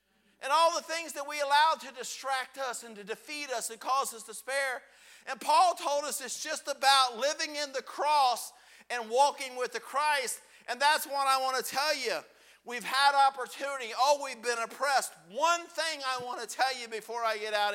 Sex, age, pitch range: male, 50-69, 200-275 Hz